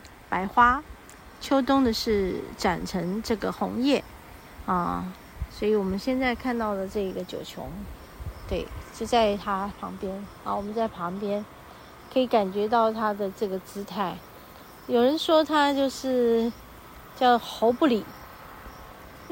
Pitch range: 200-250 Hz